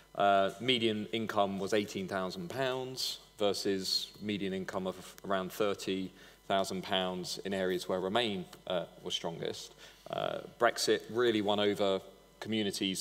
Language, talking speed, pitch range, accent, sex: English, 105 wpm, 95-115 Hz, British, male